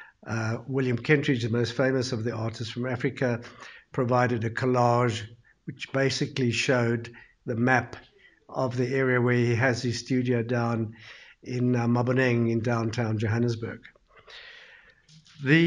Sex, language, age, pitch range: male, English, 60-79, 120-145 Hz